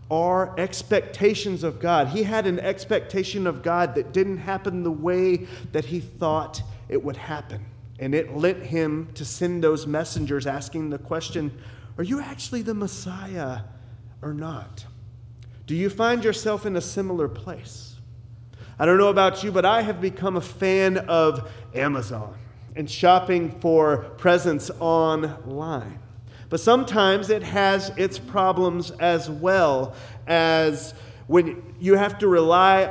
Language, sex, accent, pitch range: English, male, American, 130-180 Hz